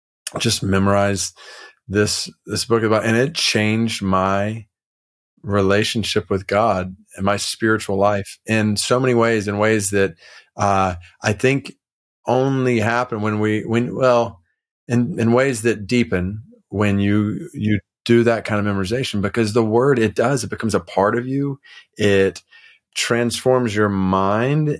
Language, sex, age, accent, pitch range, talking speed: English, male, 30-49, American, 95-120 Hz, 150 wpm